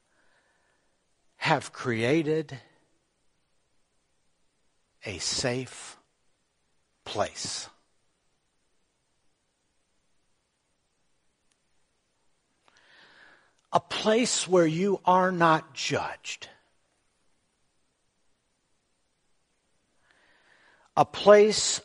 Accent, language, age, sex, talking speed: American, English, 60-79, male, 40 wpm